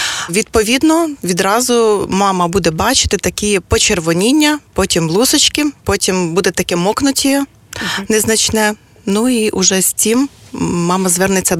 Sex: female